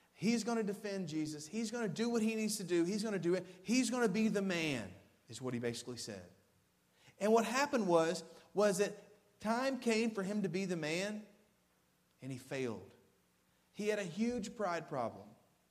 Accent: American